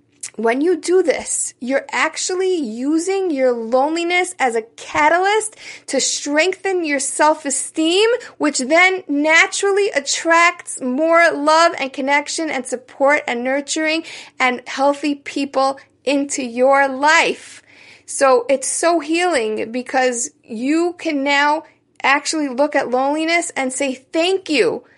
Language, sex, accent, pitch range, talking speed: English, female, American, 255-320 Hz, 120 wpm